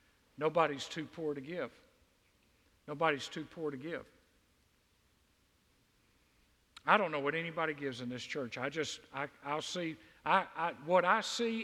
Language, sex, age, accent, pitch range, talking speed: English, male, 50-69, American, 130-170 Hz, 135 wpm